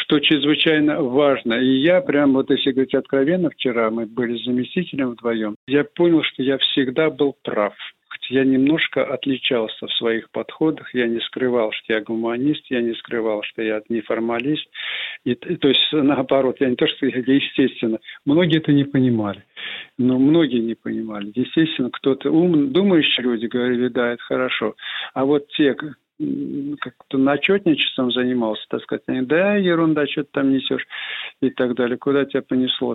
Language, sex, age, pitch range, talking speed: Russian, male, 50-69, 120-150 Hz, 155 wpm